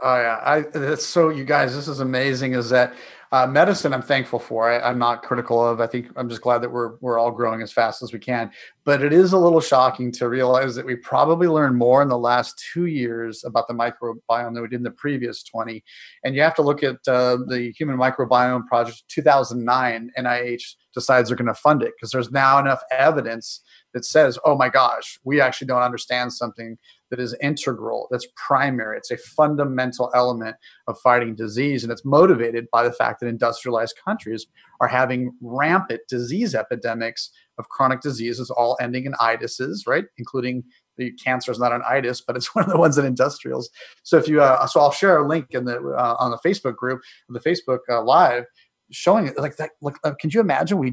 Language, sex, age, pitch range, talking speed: English, male, 30-49, 120-140 Hz, 210 wpm